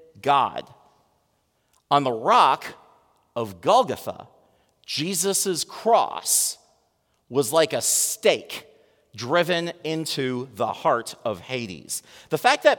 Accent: American